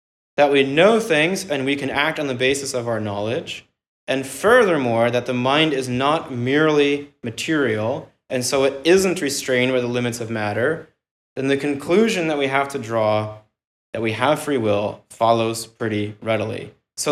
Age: 20-39